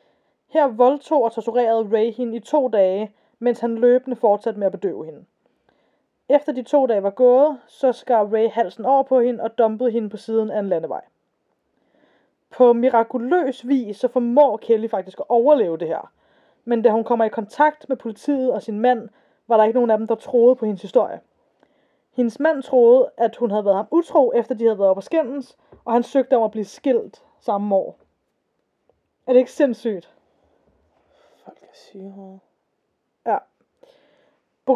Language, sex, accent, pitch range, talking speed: Danish, female, native, 225-275 Hz, 175 wpm